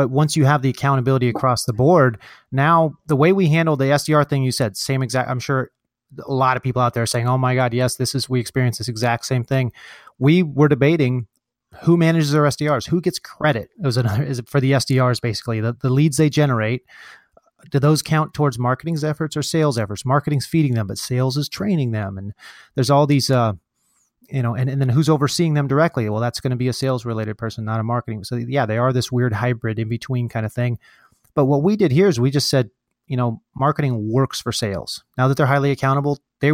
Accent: American